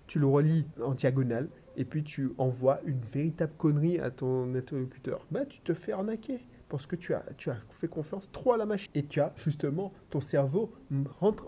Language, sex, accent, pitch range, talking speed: French, male, French, 135-185 Hz, 210 wpm